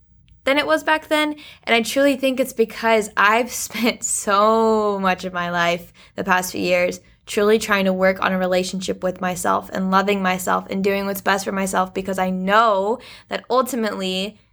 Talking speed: 185 wpm